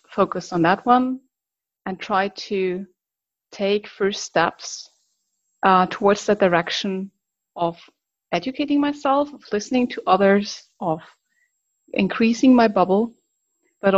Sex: female